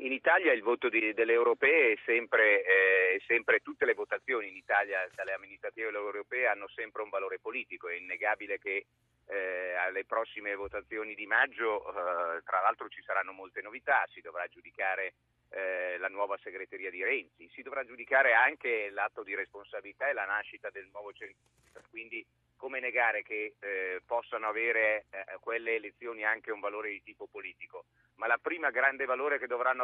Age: 40-59